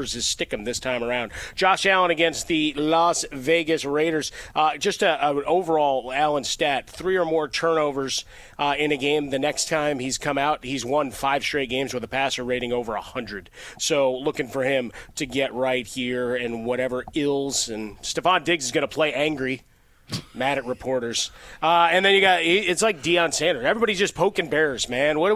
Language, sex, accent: English, male, American